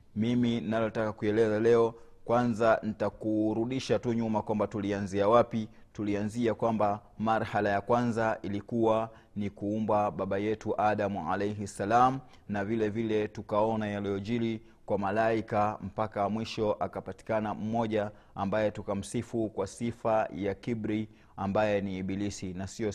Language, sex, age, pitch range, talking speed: Swahili, male, 30-49, 95-110 Hz, 120 wpm